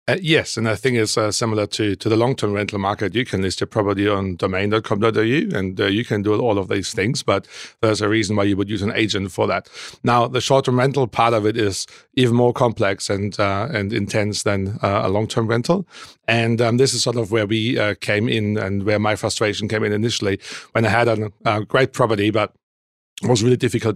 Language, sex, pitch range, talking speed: English, male, 105-120 Hz, 225 wpm